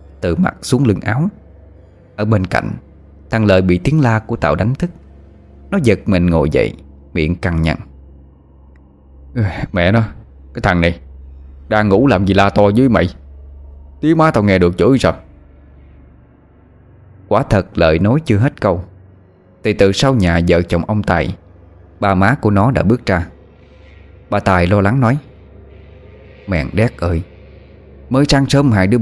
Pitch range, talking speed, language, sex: 75-110 Hz, 165 wpm, Vietnamese, male